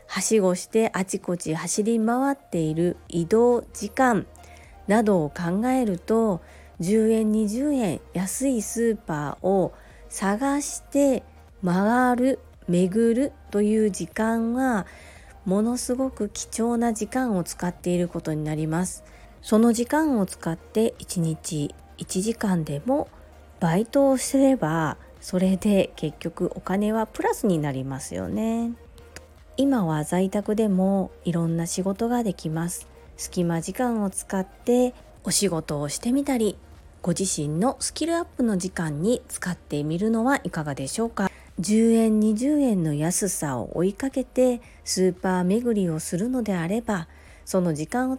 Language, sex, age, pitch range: Japanese, female, 40-59, 170-240 Hz